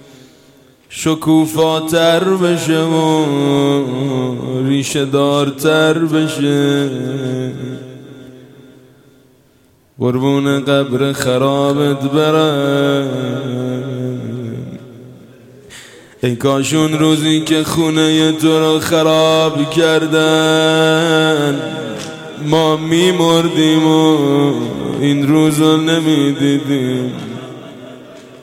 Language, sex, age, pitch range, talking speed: Persian, male, 20-39, 130-155 Hz, 55 wpm